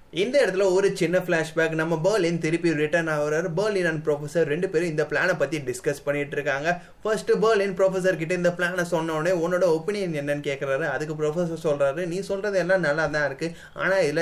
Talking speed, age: 180 wpm, 20-39